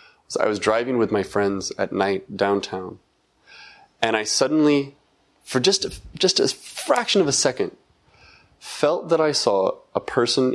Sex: male